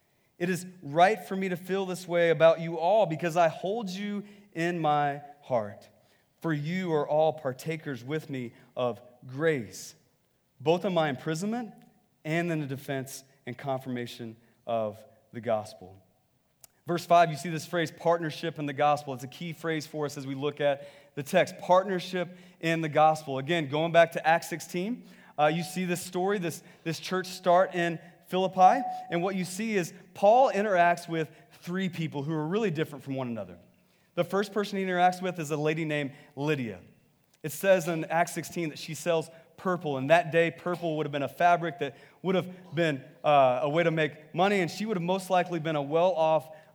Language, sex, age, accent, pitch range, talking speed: English, male, 30-49, American, 145-180 Hz, 190 wpm